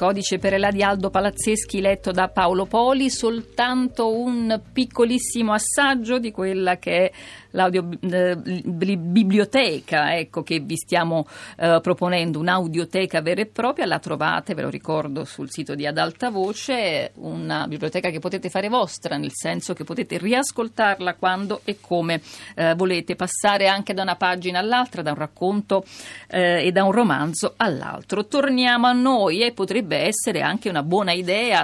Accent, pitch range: native, 165-215 Hz